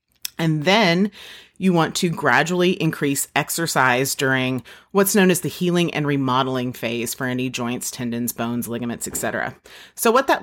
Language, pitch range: English, 140-190 Hz